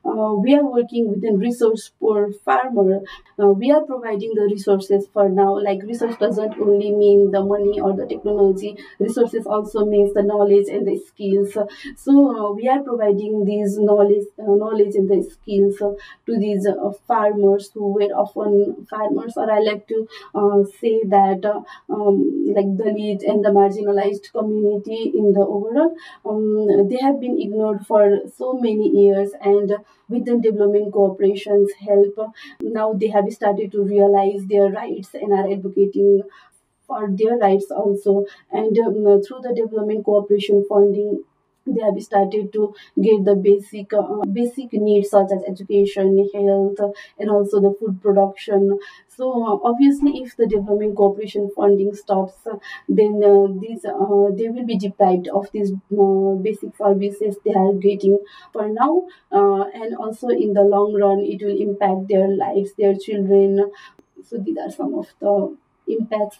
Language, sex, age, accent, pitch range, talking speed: Finnish, female, 30-49, Indian, 200-215 Hz, 160 wpm